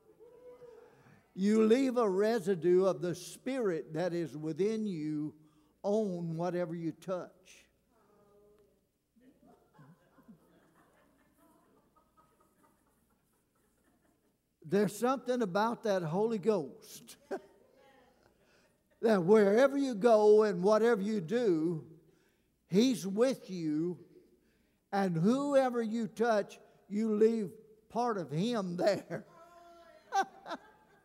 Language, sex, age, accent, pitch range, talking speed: English, male, 60-79, American, 180-230 Hz, 80 wpm